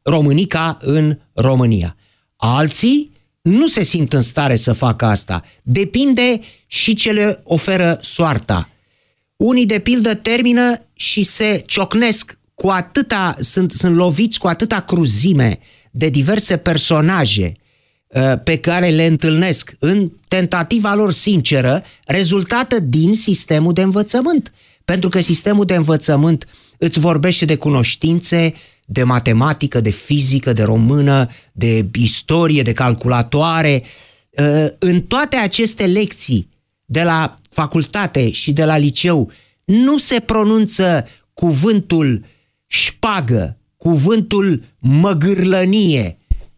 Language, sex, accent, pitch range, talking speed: Romanian, male, native, 135-185 Hz, 110 wpm